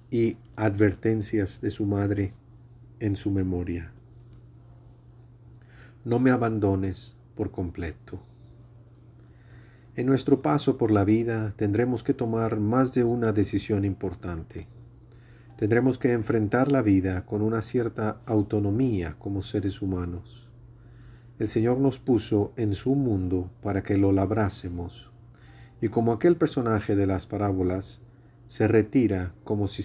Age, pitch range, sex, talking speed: 40-59, 100-120 Hz, male, 125 wpm